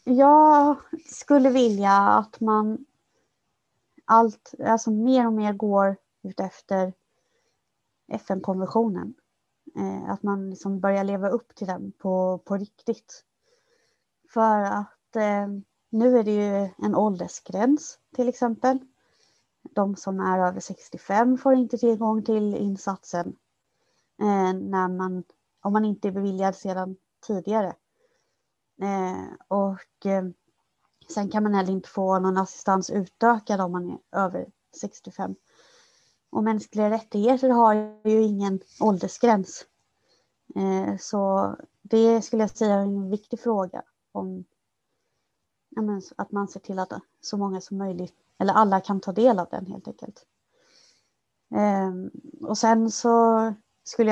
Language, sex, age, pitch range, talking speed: Swedish, female, 30-49, 190-230 Hz, 125 wpm